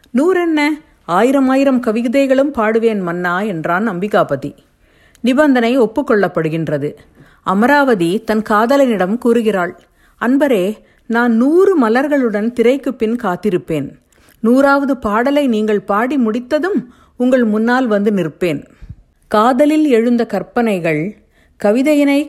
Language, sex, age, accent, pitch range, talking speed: Tamil, female, 50-69, native, 190-255 Hz, 90 wpm